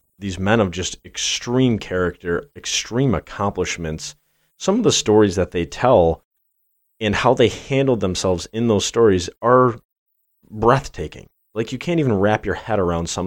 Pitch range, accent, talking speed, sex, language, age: 85-105 Hz, American, 155 wpm, male, English, 30-49